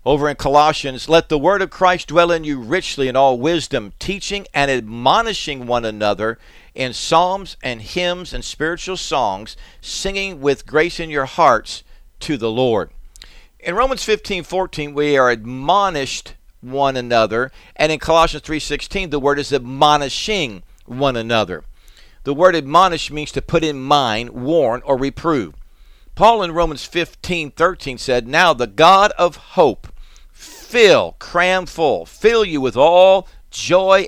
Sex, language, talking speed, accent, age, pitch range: male, English, 150 wpm, American, 50-69, 130-175 Hz